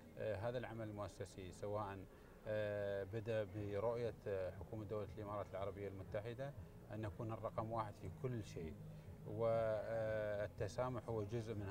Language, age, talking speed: Arabic, 30-49, 125 wpm